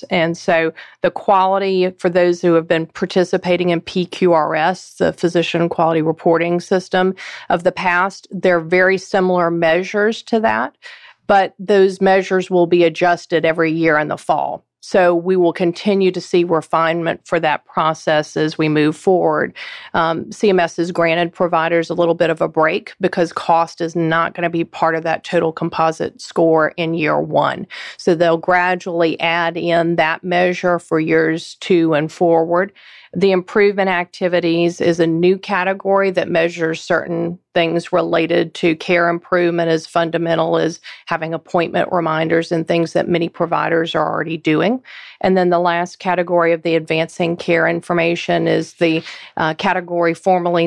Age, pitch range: 40-59, 165-180 Hz